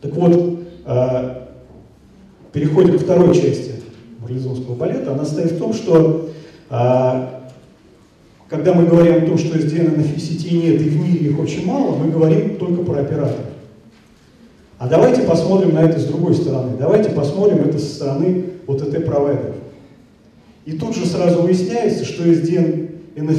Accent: native